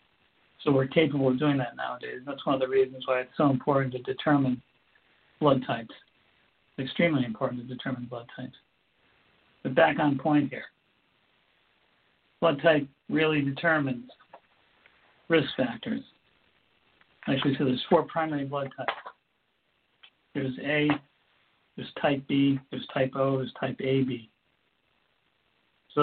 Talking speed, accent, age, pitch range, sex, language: 130 wpm, American, 60-79, 130-145 Hz, male, English